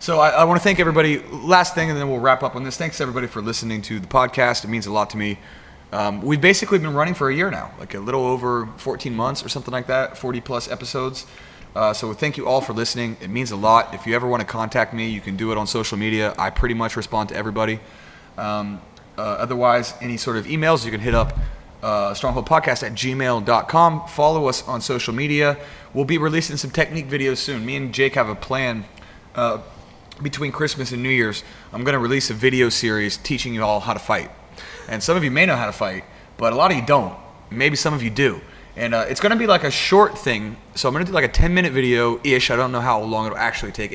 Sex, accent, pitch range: male, American, 110-140 Hz